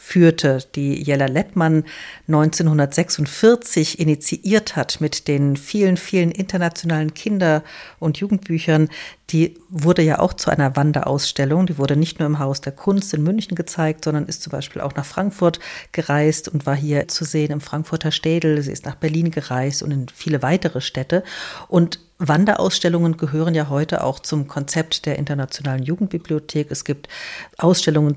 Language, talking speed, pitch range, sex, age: German, 155 wpm, 145-175 Hz, female, 50-69